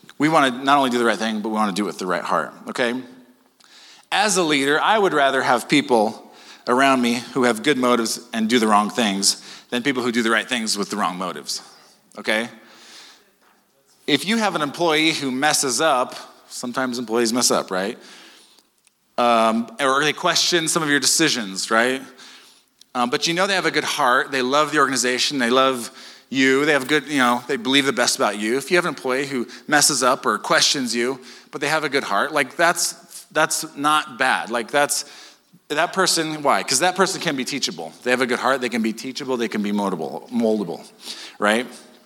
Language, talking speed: English, 210 wpm